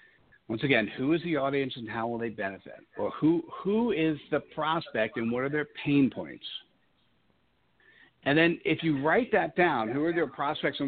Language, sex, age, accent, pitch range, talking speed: English, male, 50-69, American, 125-150 Hz, 195 wpm